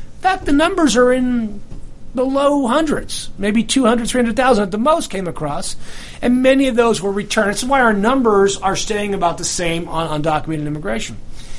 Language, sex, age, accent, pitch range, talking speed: English, male, 40-59, American, 155-220 Hz, 180 wpm